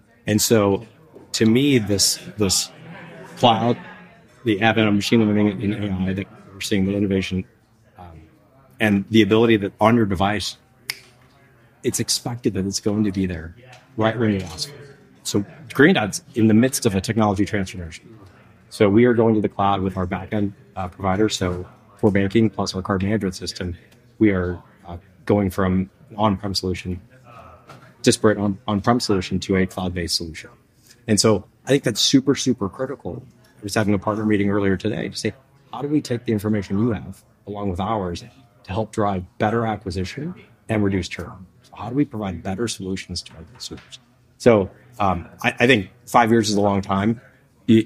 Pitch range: 95-115 Hz